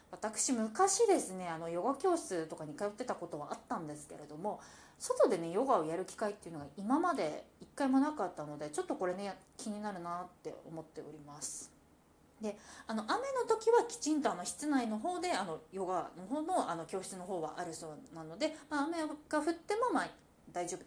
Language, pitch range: Japanese, 175-280 Hz